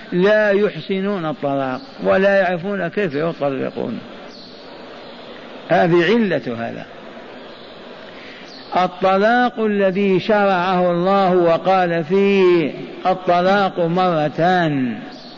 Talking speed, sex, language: 70 wpm, male, Arabic